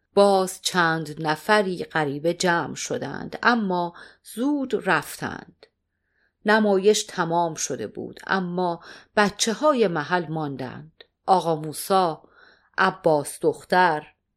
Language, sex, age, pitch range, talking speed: Persian, female, 40-59, 160-210 Hz, 90 wpm